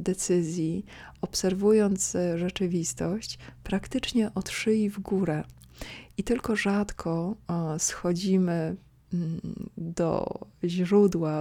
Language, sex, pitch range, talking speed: Polish, female, 170-195 Hz, 75 wpm